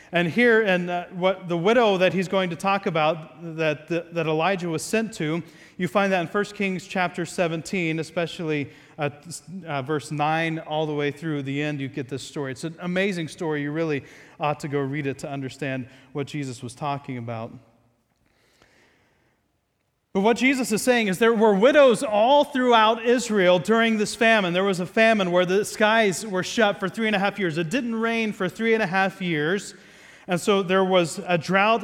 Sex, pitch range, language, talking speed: male, 160-215 Hz, English, 200 wpm